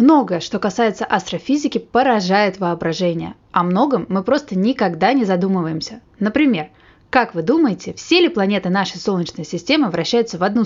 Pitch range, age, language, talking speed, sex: 190-275 Hz, 20-39, Russian, 145 wpm, female